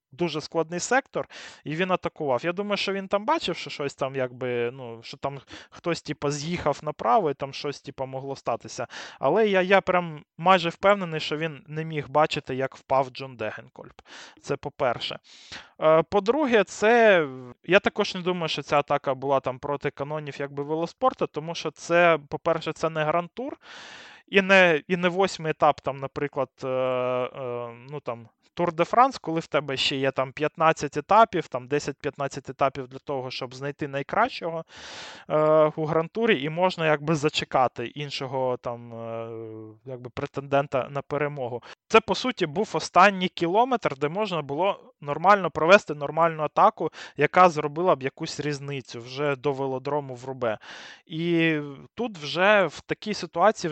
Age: 20-39